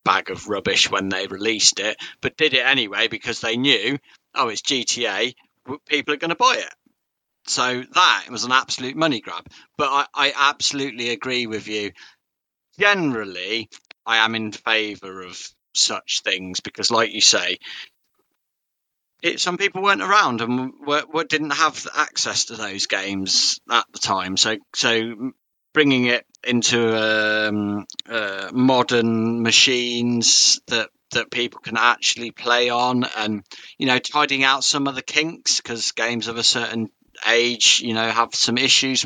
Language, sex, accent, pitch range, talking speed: English, male, British, 115-130 Hz, 160 wpm